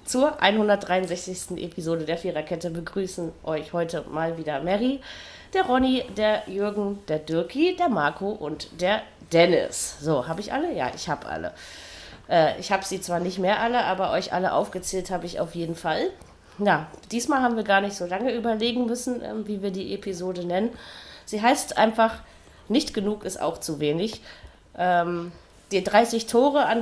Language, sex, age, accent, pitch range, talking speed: German, female, 30-49, German, 175-225 Hz, 170 wpm